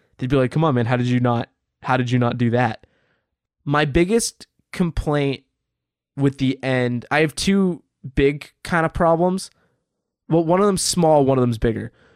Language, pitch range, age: English, 130-165 Hz, 20-39